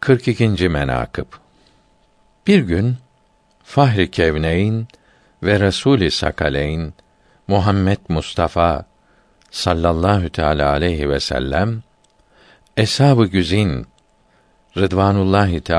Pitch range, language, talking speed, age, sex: 85-120 Hz, Turkish, 70 wpm, 60-79, male